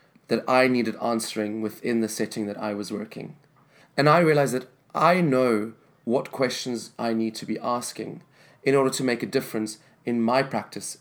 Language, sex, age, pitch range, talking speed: Danish, male, 30-49, 120-160 Hz, 180 wpm